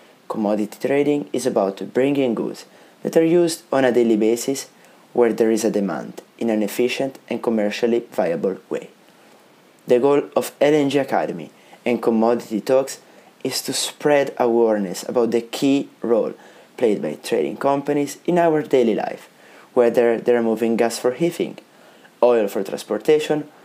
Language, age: English, 30-49